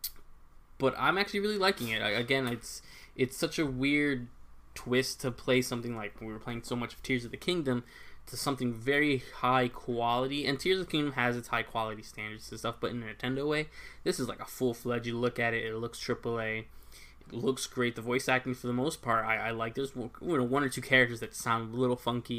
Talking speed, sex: 230 wpm, male